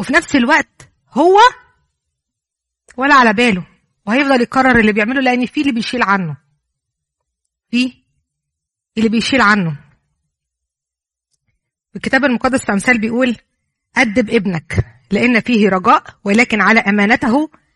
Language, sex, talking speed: Arabic, female, 110 wpm